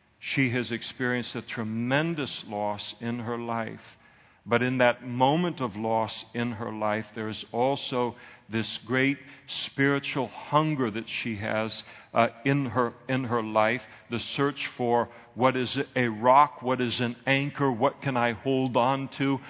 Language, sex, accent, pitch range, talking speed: English, male, American, 120-150 Hz, 155 wpm